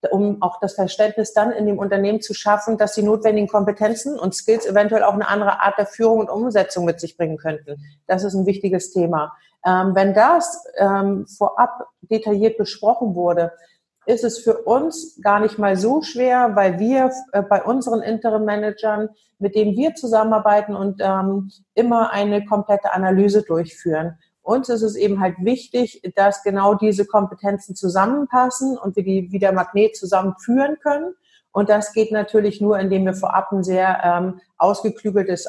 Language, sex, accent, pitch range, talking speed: German, female, German, 190-220 Hz, 160 wpm